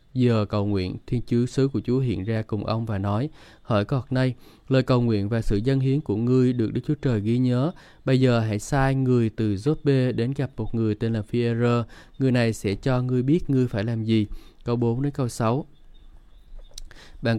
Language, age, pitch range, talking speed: Vietnamese, 20-39, 110-135 Hz, 215 wpm